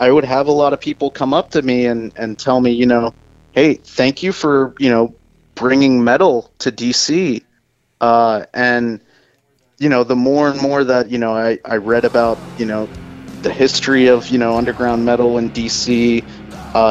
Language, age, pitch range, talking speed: English, 30-49, 110-125 Hz, 190 wpm